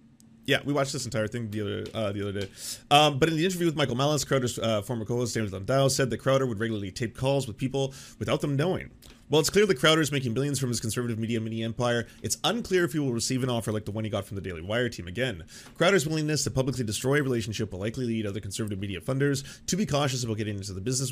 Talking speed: 260 wpm